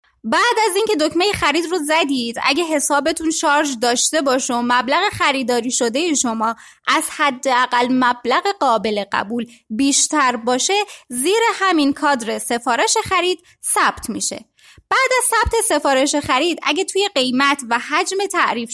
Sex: female